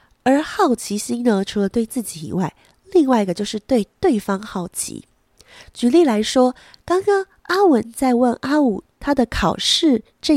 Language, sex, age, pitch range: Chinese, female, 20-39, 200-270 Hz